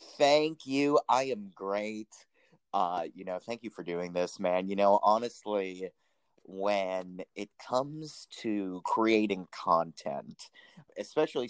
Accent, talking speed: American, 125 wpm